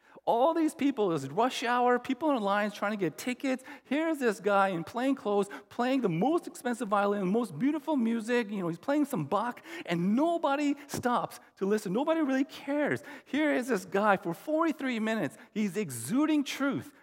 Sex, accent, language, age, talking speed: male, American, English, 40-59, 190 wpm